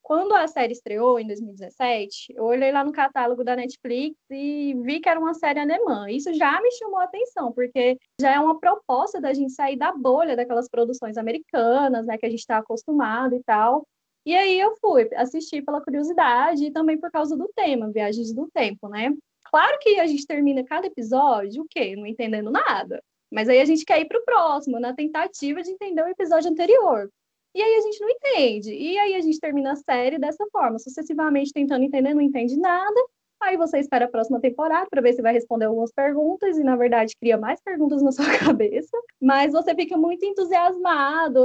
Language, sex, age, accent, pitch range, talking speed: Portuguese, female, 10-29, Brazilian, 245-325 Hz, 200 wpm